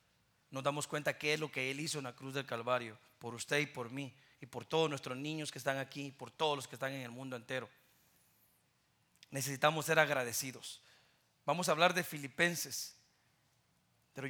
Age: 40-59